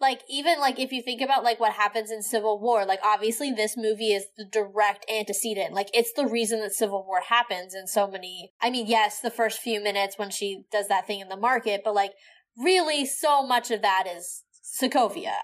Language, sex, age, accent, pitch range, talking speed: English, female, 20-39, American, 205-245 Hz, 220 wpm